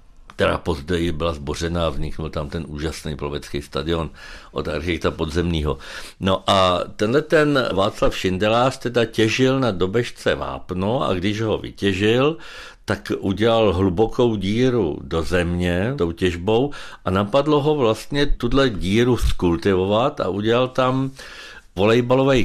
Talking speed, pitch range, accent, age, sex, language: 130 wpm, 95-125 Hz, native, 60-79, male, Czech